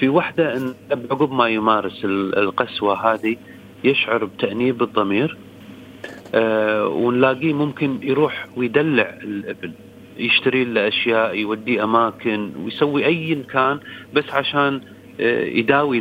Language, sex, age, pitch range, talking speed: Arabic, male, 40-59, 105-135 Hz, 105 wpm